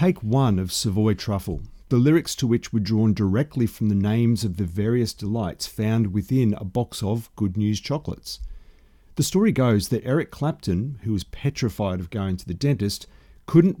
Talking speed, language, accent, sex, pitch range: 185 wpm, English, Australian, male, 100-130 Hz